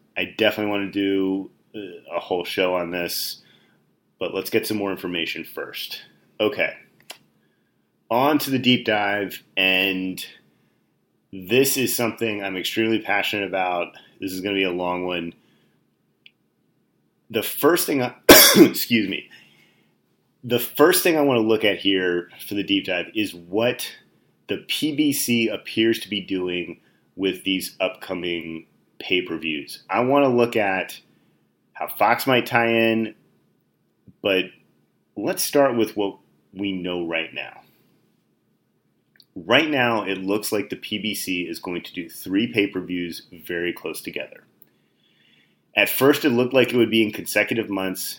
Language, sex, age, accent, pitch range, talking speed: English, male, 30-49, American, 90-115 Hz, 145 wpm